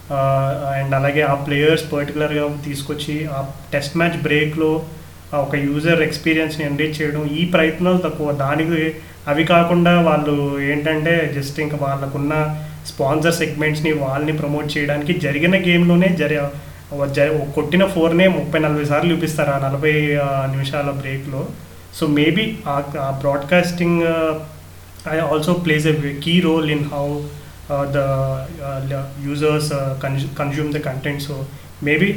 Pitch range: 140-160 Hz